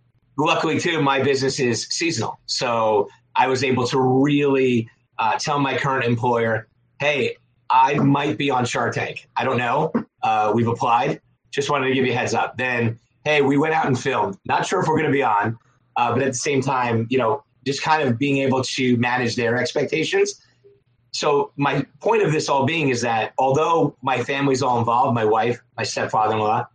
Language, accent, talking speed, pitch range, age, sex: English, American, 195 wpm, 120-140 Hz, 30-49, male